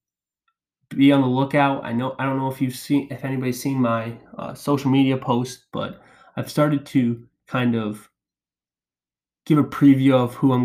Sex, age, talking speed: male, 20-39, 180 wpm